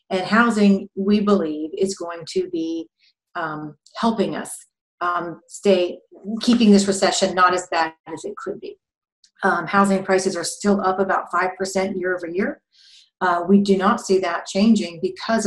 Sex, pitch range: female, 180-205 Hz